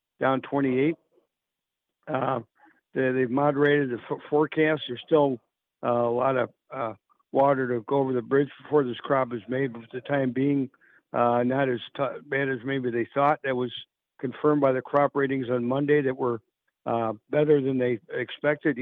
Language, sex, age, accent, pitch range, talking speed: English, male, 60-79, American, 125-145 Hz, 180 wpm